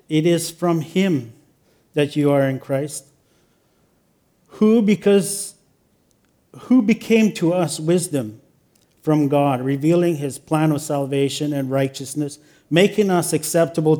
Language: English